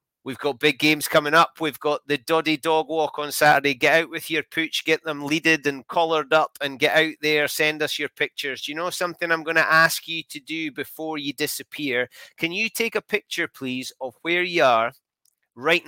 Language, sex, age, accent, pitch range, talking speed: English, male, 30-49, British, 135-160 Hz, 215 wpm